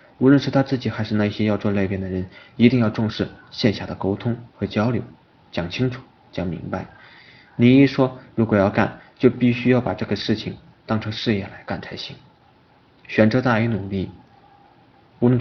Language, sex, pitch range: Chinese, male, 100-125 Hz